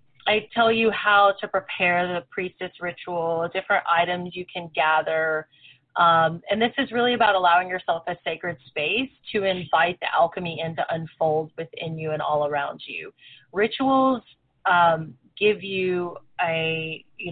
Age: 30-49